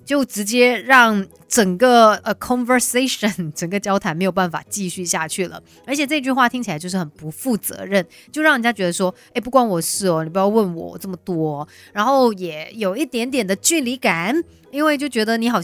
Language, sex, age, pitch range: Chinese, female, 30-49, 175-235 Hz